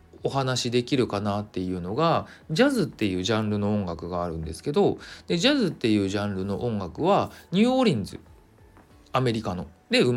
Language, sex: Japanese, male